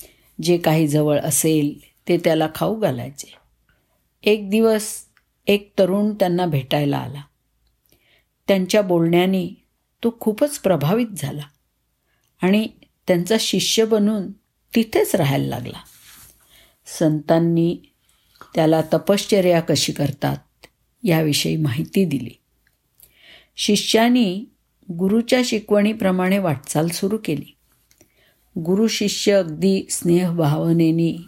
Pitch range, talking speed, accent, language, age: 155-215 Hz, 90 wpm, native, Marathi, 50-69